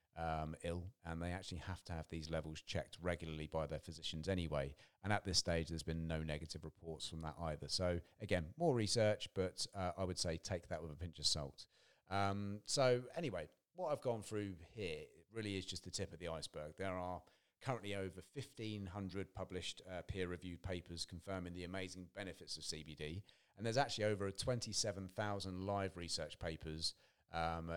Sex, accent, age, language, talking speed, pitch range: male, British, 30-49, English, 180 wpm, 85-105 Hz